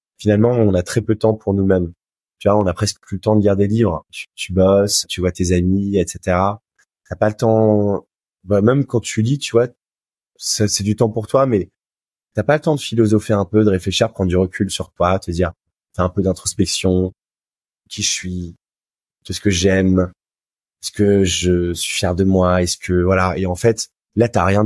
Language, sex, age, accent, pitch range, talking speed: French, male, 20-39, French, 90-105 Hz, 220 wpm